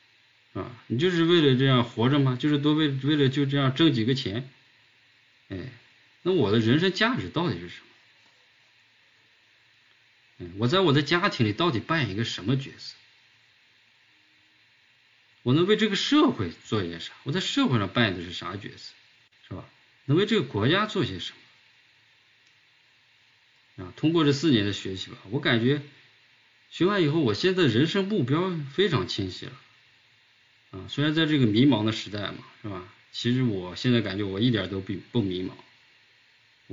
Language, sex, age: Chinese, male, 50-69